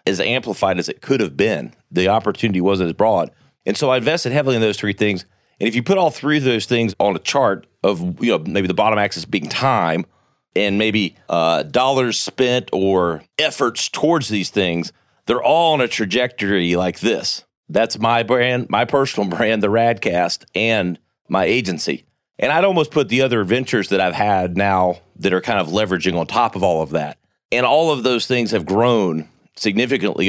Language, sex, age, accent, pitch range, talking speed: English, male, 40-59, American, 95-125 Hz, 200 wpm